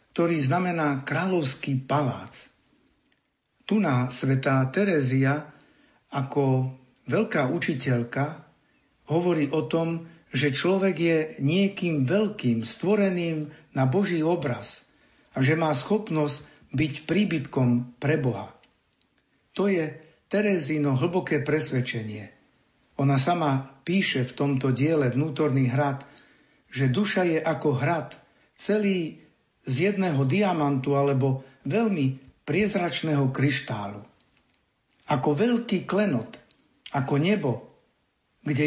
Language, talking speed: Slovak, 95 wpm